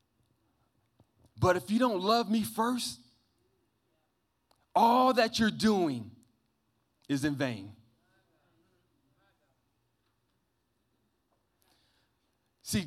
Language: English